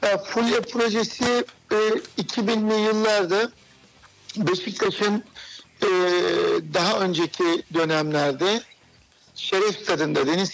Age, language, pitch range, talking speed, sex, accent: 60-79, Turkish, 170-215 Hz, 55 wpm, male, native